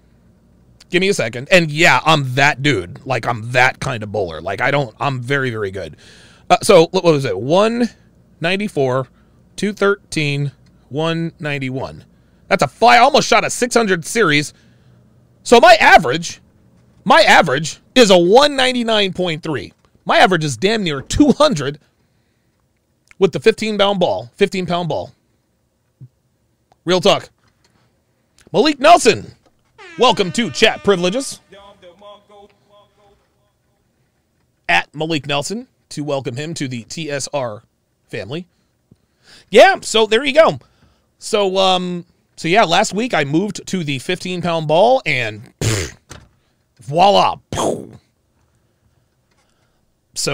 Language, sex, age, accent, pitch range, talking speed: English, male, 30-49, American, 130-200 Hz, 120 wpm